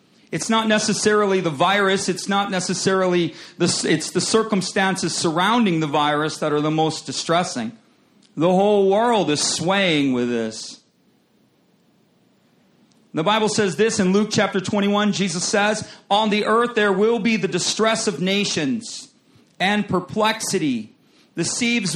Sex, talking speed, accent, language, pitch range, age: male, 135 wpm, American, English, 180-220 Hz, 40-59